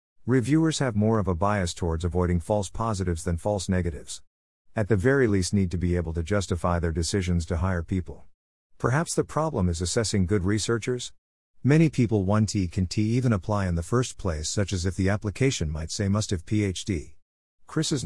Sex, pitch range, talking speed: male, 90-115 Hz, 195 wpm